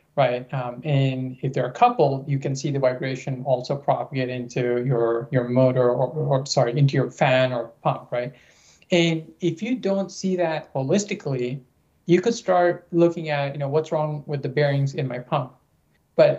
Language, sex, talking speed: English, male, 185 wpm